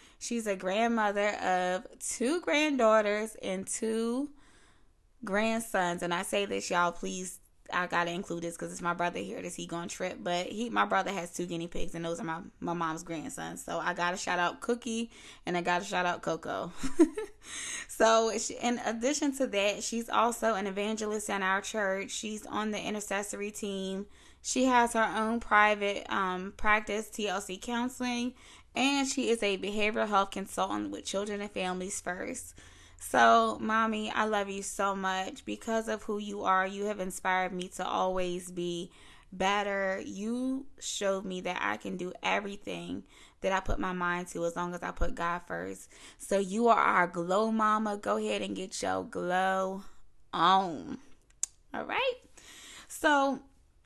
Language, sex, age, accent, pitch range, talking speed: English, female, 20-39, American, 175-225 Hz, 170 wpm